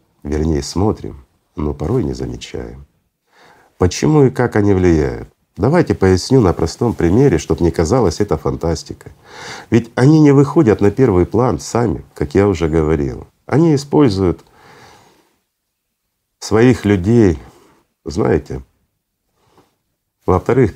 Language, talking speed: Russian, 115 wpm